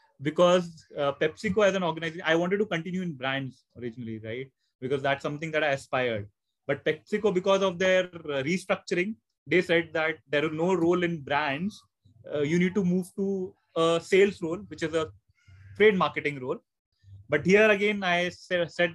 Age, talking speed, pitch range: 30-49, 175 wpm, 140-180 Hz